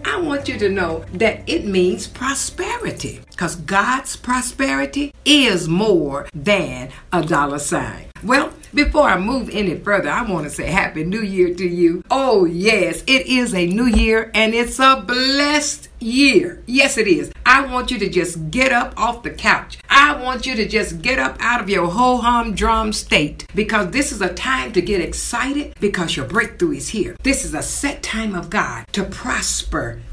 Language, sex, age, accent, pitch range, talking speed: English, female, 60-79, American, 180-255 Hz, 185 wpm